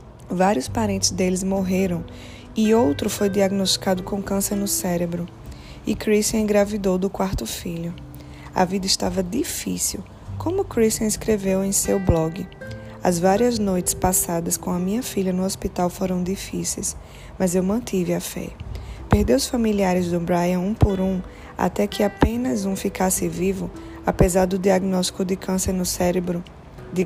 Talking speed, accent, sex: 150 wpm, Brazilian, female